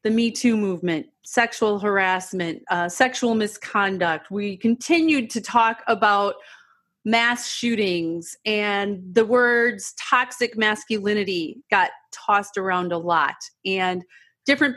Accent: American